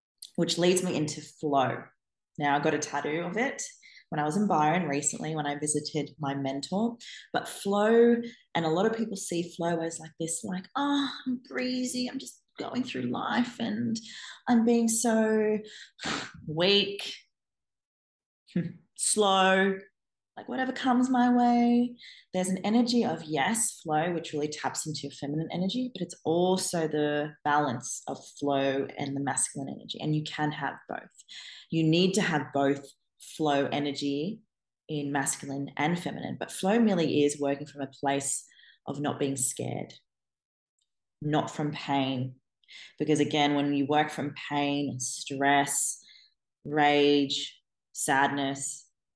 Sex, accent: female, Australian